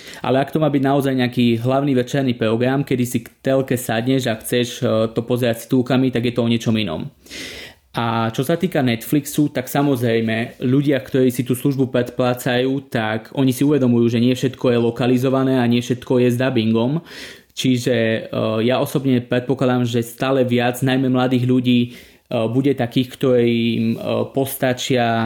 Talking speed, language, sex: 165 wpm, Slovak, male